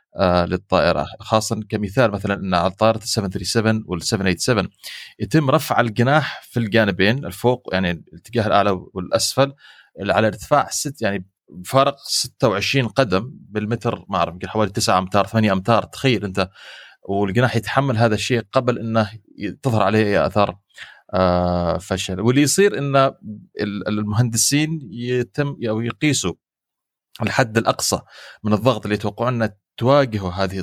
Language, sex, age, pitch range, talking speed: Arabic, male, 30-49, 95-125 Hz, 125 wpm